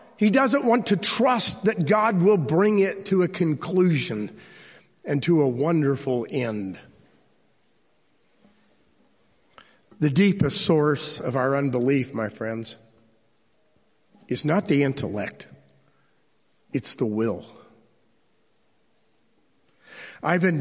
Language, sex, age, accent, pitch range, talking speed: English, male, 50-69, American, 120-175 Hz, 100 wpm